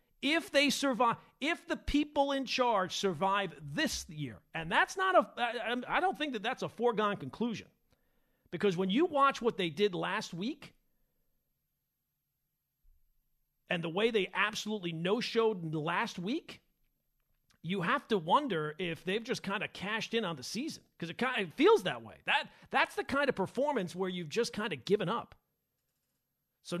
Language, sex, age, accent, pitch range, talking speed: English, male, 40-59, American, 170-235 Hz, 170 wpm